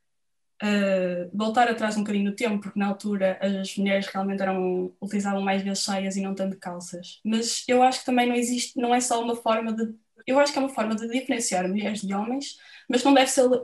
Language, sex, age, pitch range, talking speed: Portuguese, female, 10-29, 205-255 Hz, 220 wpm